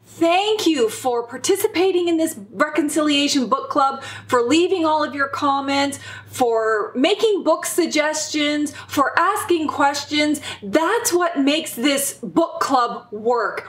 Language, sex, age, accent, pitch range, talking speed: English, female, 30-49, American, 260-355 Hz, 125 wpm